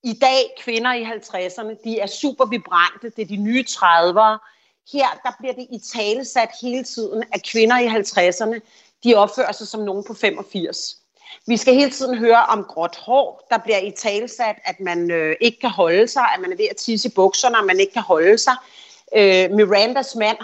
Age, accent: 40-59, native